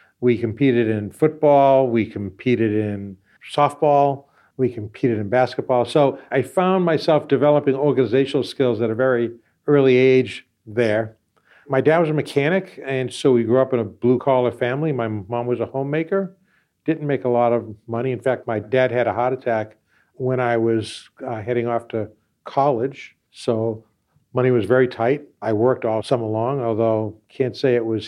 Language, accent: English, American